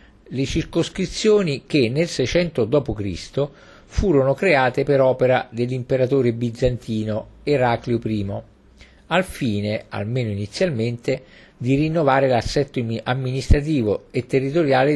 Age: 50-69